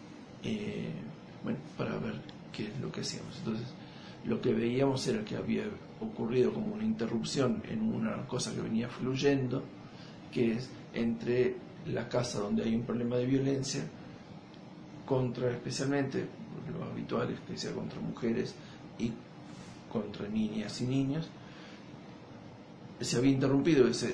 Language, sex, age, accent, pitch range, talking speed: Spanish, male, 50-69, Argentinian, 115-140 Hz, 135 wpm